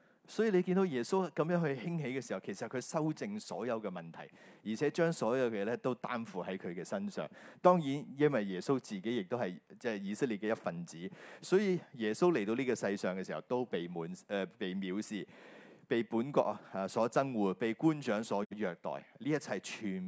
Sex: male